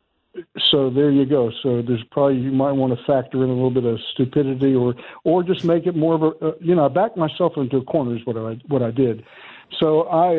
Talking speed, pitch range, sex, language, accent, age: 245 wpm, 130-165 Hz, male, English, American, 60-79